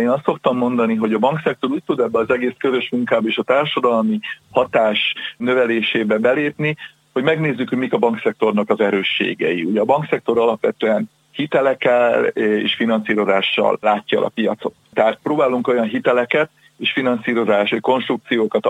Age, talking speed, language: 40-59, 150 wpm, Hungarian